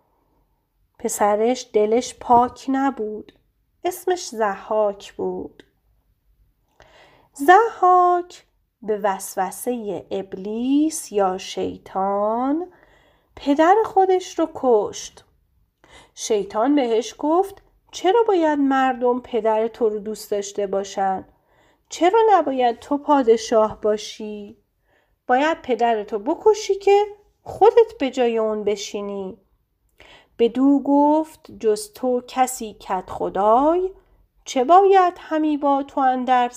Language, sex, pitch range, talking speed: Persian, female, 210-310 Hz, 95 wpm